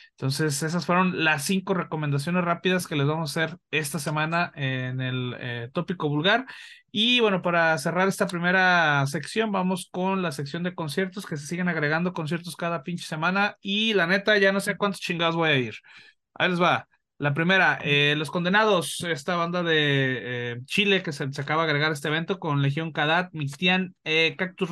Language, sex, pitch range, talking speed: Spanish, male, 155-190 Hz, 190 wpm